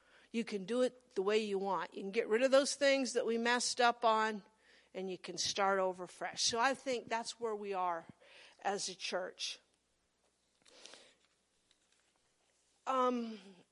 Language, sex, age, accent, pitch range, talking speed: English, female, 50-69, American, 210-265 Hz, 160 wpm